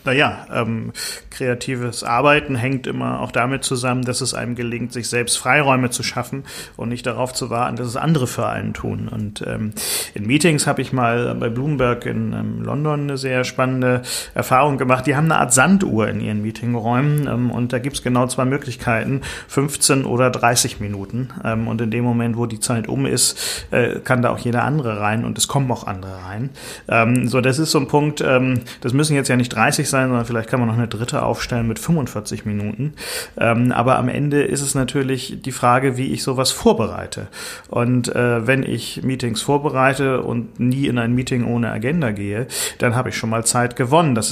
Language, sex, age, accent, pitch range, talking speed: German, male, 40-59, German, 115-130 Hz, 205 wpm